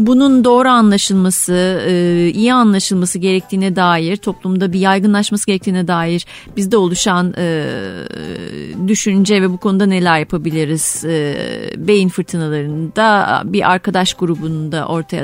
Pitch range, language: 175-215 Hz, Turkish